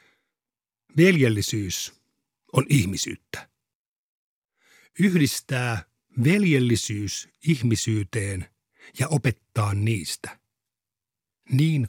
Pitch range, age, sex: 105-140 Hz, 60-79, male